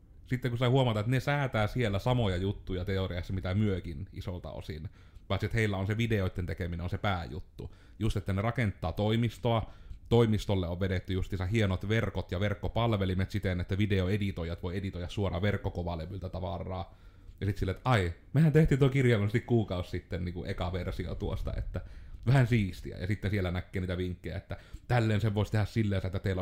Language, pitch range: Finnish, 90-105 Hz